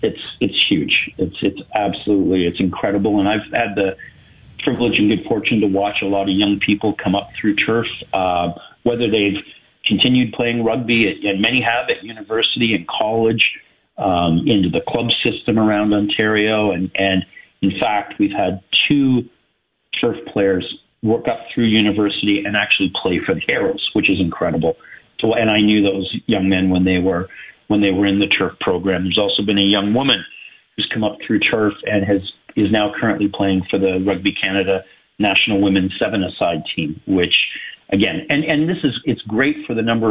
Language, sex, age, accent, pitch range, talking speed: English, male, 40-59, American, 100-115 Hz, 185 wpm